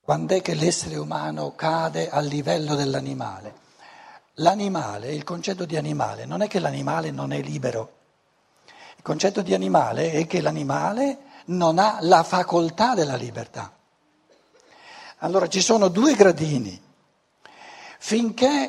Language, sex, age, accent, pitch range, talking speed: Italian, male, 60-79, native, 155-215 Hz, 130 wpm